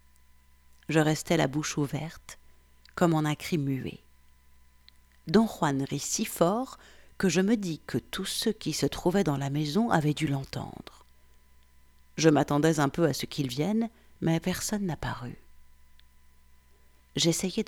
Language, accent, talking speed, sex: French, French, 145 wpm, female